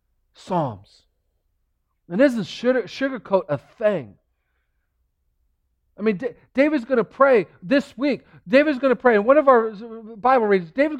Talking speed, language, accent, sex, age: 135 wpm, English, American, male, 40-59